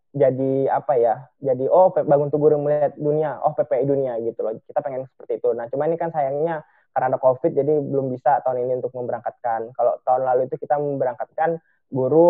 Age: 20-39